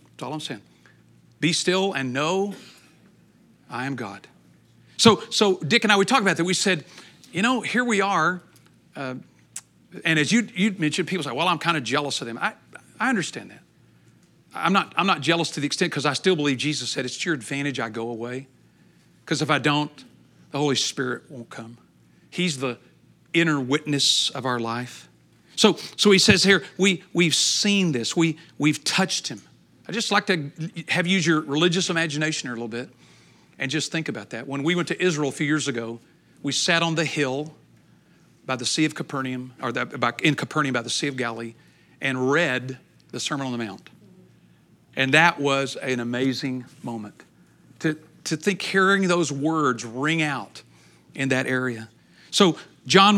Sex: male